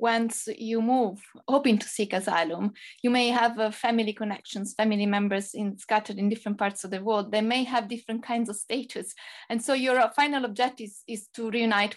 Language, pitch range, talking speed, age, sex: English, 205-235 Hz, 195 wpm, 20-39, female